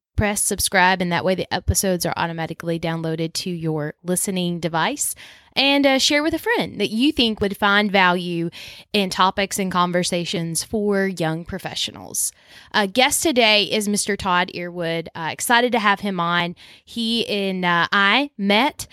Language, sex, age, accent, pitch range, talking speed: English, female, 20-39, American, 180-225 Hz, 160 wpm